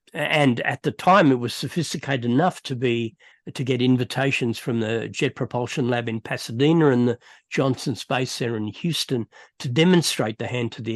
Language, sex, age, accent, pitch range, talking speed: English, male, 60-79, Australian, 115-145 Hz, 180 wpm